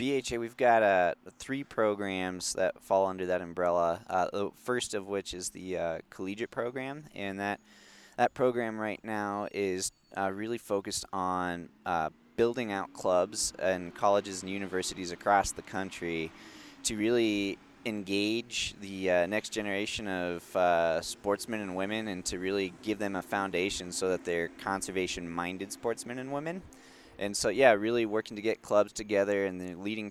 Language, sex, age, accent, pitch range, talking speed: English, male, 20-39, American, 90-105 Hz, 160 wpm